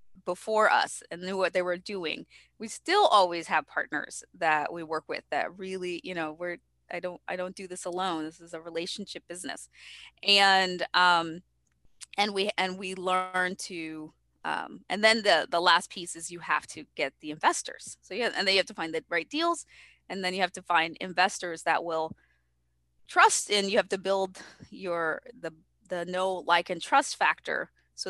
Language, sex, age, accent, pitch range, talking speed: English, female, 20-39, American, 165-210 Hz, 190 wpm